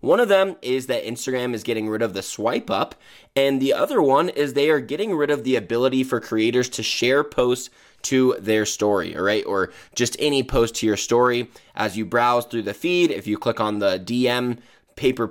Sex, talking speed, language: male, 215 wpm, English